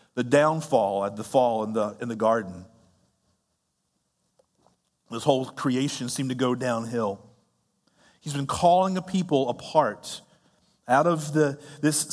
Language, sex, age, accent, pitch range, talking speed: English, male, 40-59, American, 125-175 Hz, 135 wpm